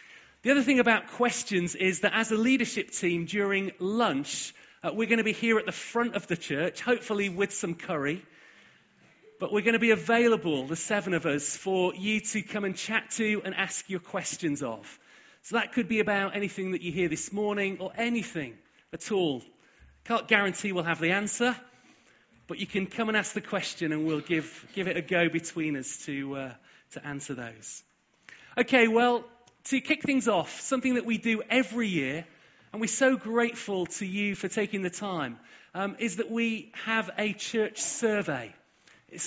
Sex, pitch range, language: male, 175-225 Hz, English